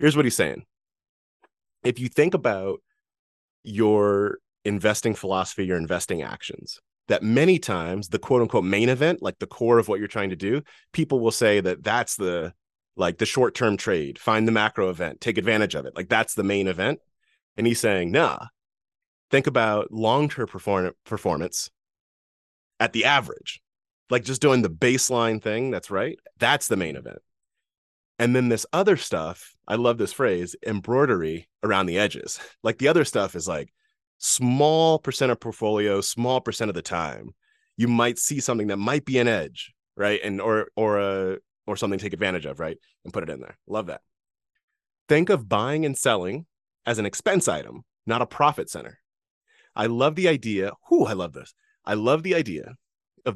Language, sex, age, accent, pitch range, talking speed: English, male, 30-49, American, 100-140 Hz, 180 wpm